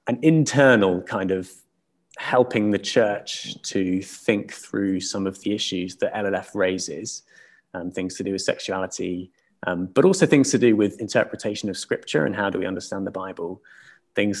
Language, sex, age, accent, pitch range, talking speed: English, male, 20-39, British, 95-120 Hz, 170 wpm